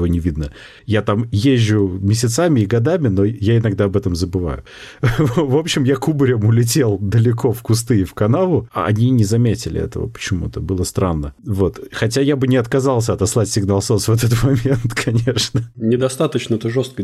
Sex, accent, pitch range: male, native, 95-125 Hz